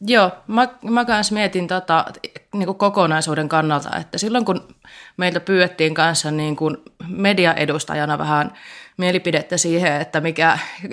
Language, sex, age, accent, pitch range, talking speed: Finnish, female, 20-39, native, 155-185 Hz, 115 wpm